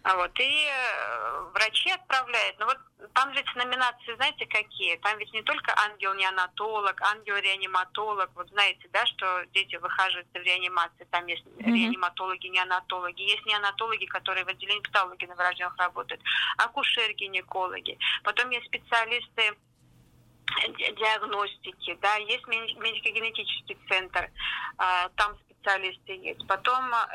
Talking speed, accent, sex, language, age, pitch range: 115 wpm, native, female, Russian, 30-49, 190-235 Hz